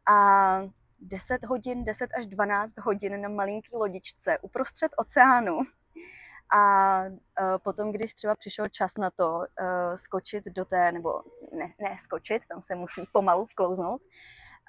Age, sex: 20-39, female